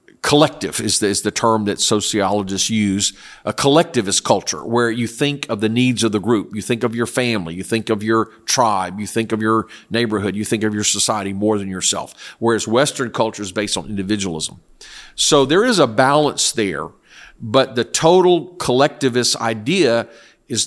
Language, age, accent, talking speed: English, 50-69, American, 180 wpm